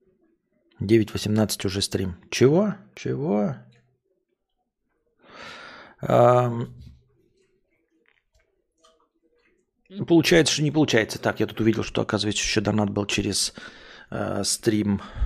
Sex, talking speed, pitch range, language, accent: male, 85 wpm, 105-130 Hz, Russian, native